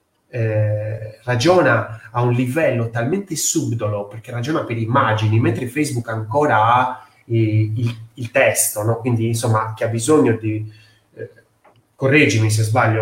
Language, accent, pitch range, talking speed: Italian, native, 110-130 Hz, 125 wpm